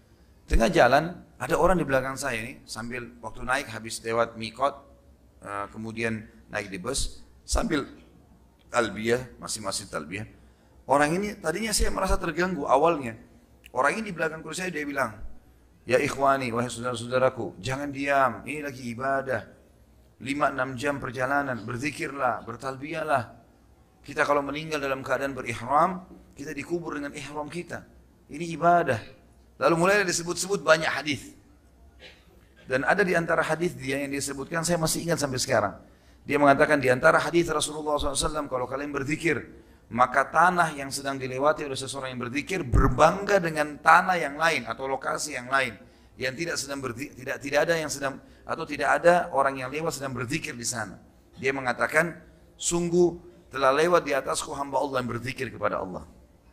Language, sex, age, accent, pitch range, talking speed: Indonesian, male, 40-59, native, 120-155 Hz, 150 wpm